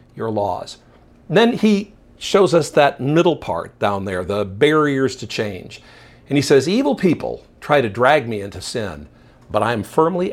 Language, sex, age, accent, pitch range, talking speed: English, male, 50-69, American, 105-135 Hz, 170 wpm